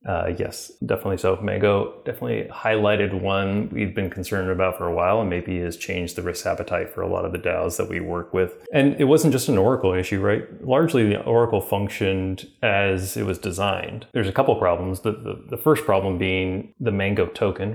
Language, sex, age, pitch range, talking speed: English, male, 30-49, 90-105 Hz, 215 wpm